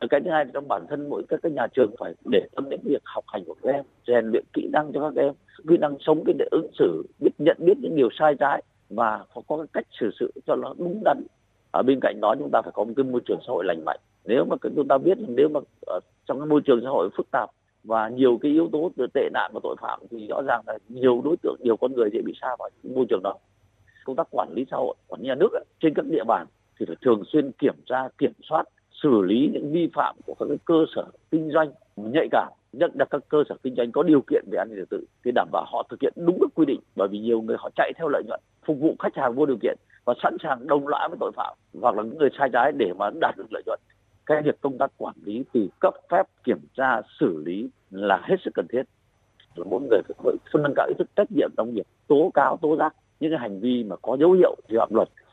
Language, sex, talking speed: Vietnamese, male, 270 wpm